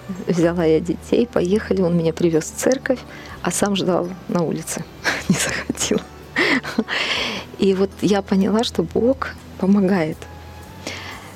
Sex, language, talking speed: female, Ukrainian, 120 wpm